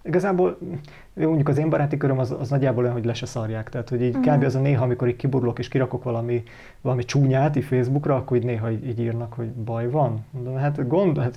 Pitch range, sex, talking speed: 120-140 Hz, male, 210 wpm